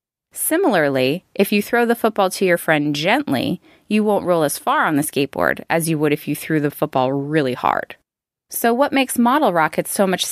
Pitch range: 155-210 Hz